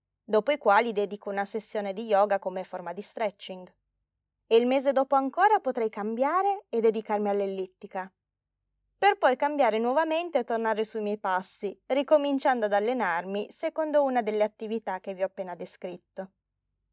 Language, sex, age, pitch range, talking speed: Italian, female, 20-39, 200-275 Hz, 150 wpm